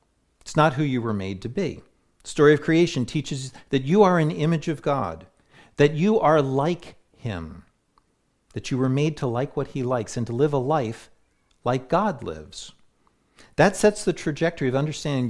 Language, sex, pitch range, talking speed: English, male, 120-160 Hz, 190 wpm